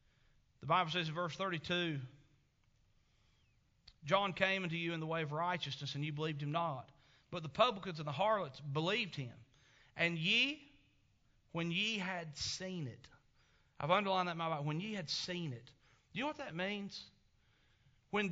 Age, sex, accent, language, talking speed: 40-59, male, American, English, 175 wpm